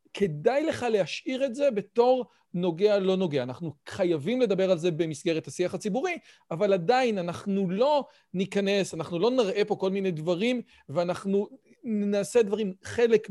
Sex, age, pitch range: male, 40-59, 175-245 Hz